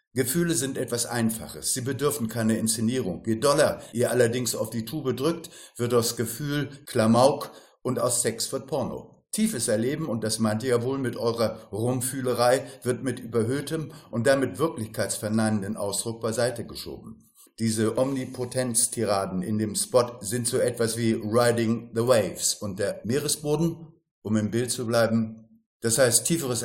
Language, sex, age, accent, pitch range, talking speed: German, male, 50-69, German, 110-135 Hz, 155 wpm